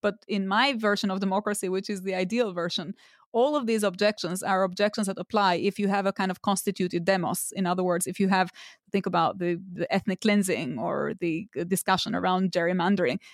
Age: 30-49